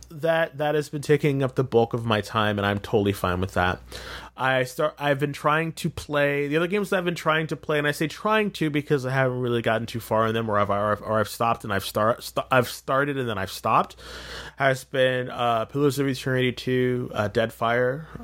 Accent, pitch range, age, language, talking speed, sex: American, 110-140 Hz, 20-39, English, 245 wpm, male